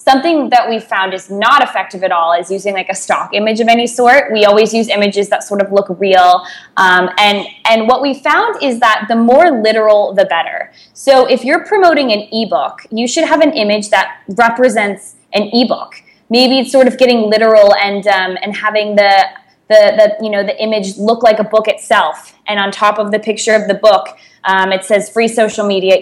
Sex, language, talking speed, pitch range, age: female, English, 210 wpm, 195-240 Hz, 20-39